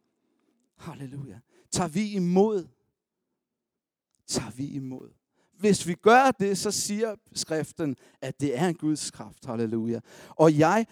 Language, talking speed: Danish, 125 wpm